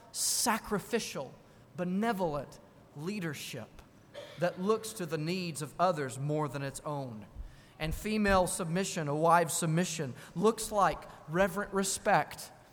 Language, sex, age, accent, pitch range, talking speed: English, male, 30-49, American, 150-210 Hz, 115 wpm